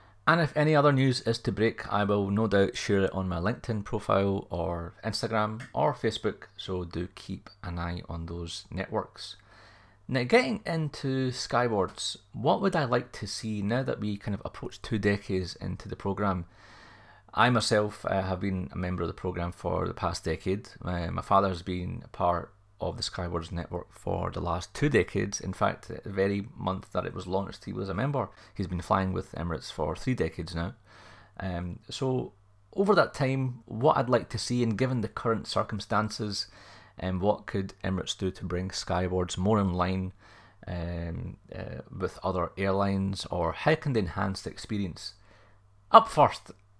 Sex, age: male, 30-49